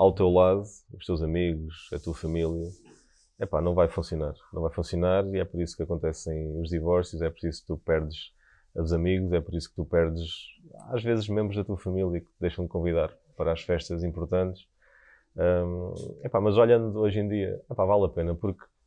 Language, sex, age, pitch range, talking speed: Portuguese, male, 20-39, 85-100 Hz, 215 wpm